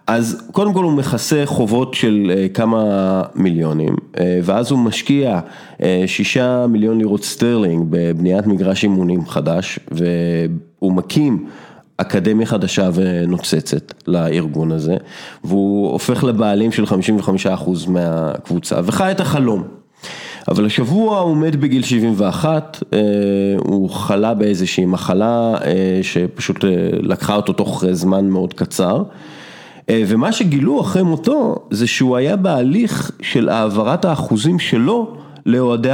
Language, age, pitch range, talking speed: English, 30-49, 95-135 Hz, 110 wpm